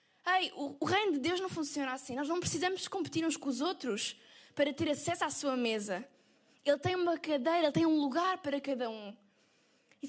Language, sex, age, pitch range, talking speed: Portuguese, female, 10-29, 270-345 Hz, 210 wpm